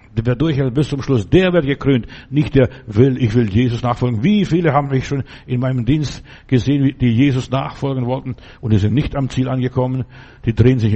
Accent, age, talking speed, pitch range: German, 60-79, 210 wpm, 120-145 Hz